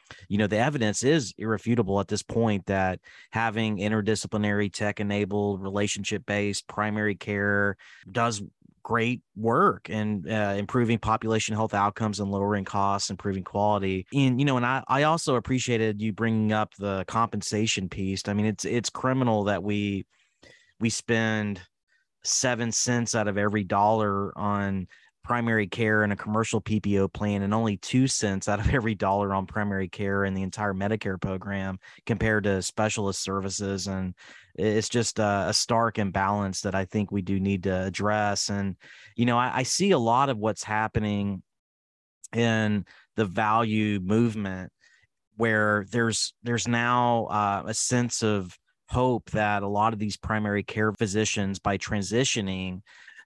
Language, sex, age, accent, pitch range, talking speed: English, male, 30-49, American, 100-115 Hz, 155 wpm